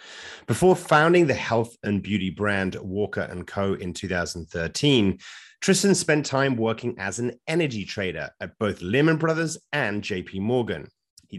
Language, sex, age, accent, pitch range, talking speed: English, male, 30-49, British, 95-130 Hz, 140 wpm